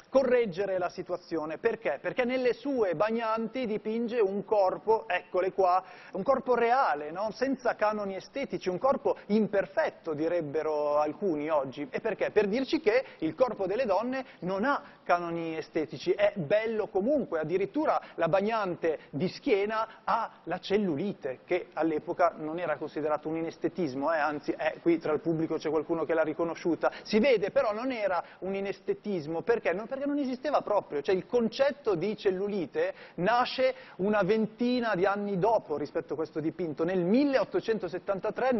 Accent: native